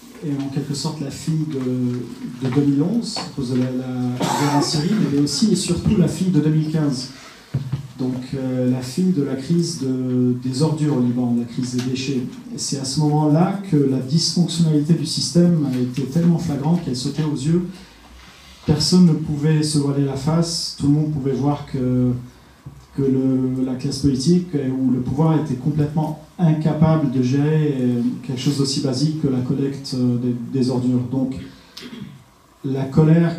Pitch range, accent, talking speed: 130-155 Hz, French, 175 wpm